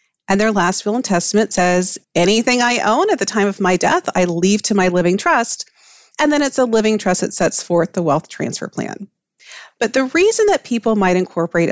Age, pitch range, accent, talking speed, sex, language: 40-59, 185-225 Hz, American, 215 wpm, female, English